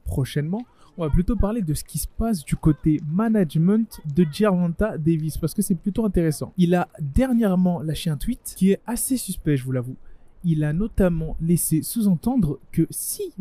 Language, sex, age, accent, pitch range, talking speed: French, male, 20-39, French, 150-205 Hz, 185 wpm